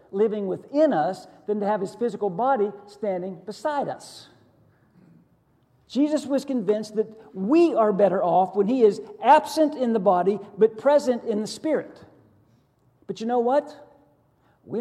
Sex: male